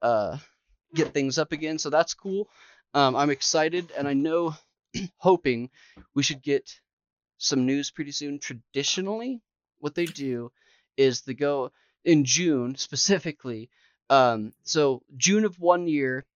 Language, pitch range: English, 130-165 Hz